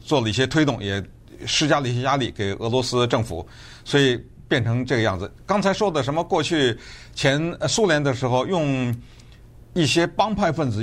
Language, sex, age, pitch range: Chinese, male, 50-69, 115-145 Hz